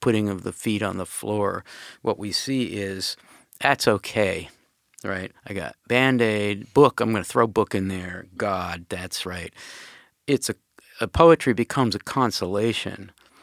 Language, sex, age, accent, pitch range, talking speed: English, male, 50-69, American, 95-115 Hz, 155 wpm